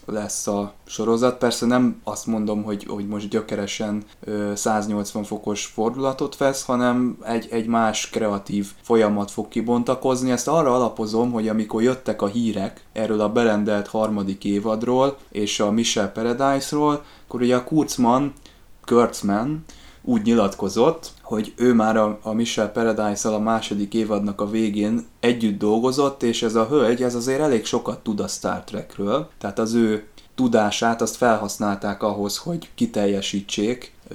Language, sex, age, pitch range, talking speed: Hungarian, male, 20-39, 105-120 Hz, 140 wpm